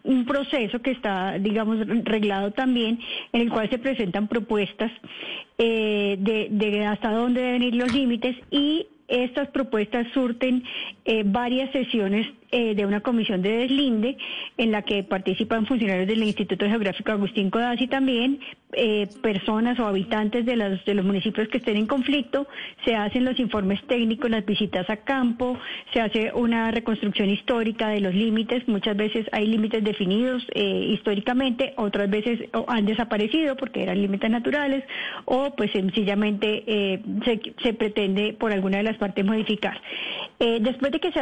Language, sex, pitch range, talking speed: Spanish, female, 210-255 Hz, 160 wpm